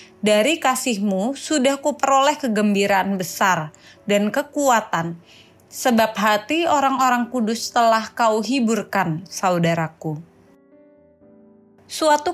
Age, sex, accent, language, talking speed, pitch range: 20-39, female, native, Indonesian, 85 wpm, 200-270 Hz